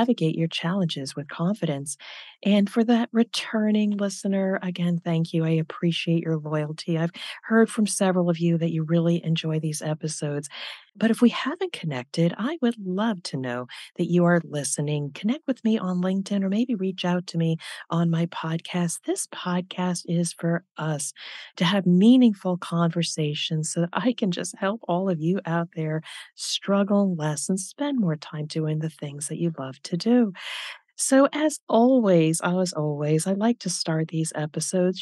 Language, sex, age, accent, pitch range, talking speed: English, female, 40-59, American, 155-205 Hz, 175 wpm